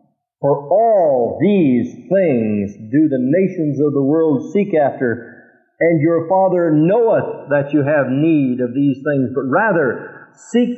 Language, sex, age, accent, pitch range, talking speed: English, male, 50-69, American, 160-210 Hz, 145 wpm